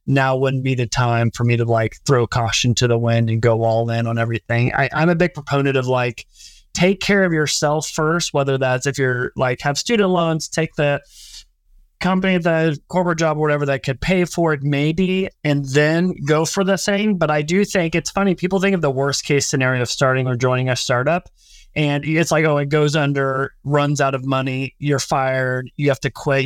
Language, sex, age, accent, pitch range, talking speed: English, male, 30-49, American, 130-160 Hz, 220 wpm